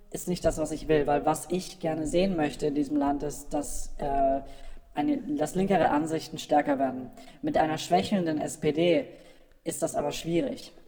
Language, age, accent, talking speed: German, 20-39, German, 170 wpm